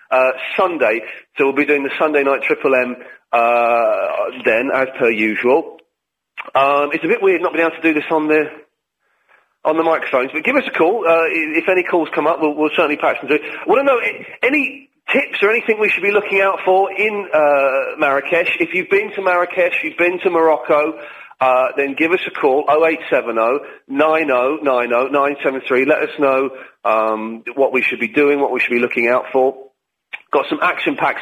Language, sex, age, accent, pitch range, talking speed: English, male, 40-59, British, 130-165 Hz, 195 wpm